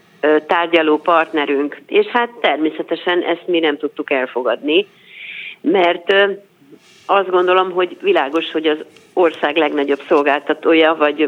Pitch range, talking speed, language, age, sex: 150-180 Hz, 110 wpm, Hungarian, 40-59, female